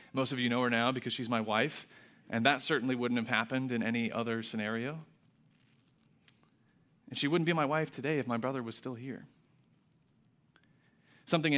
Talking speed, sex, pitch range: 175 wpm, male, 120-150 Hz